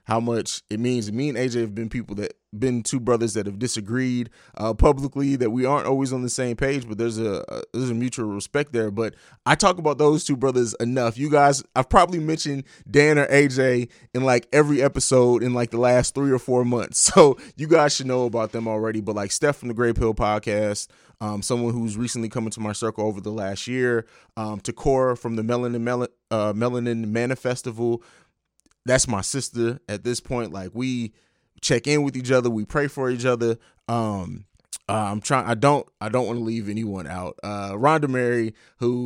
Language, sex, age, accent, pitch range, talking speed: English, male, 20-39, American, 115-130 Hz, 210 wpm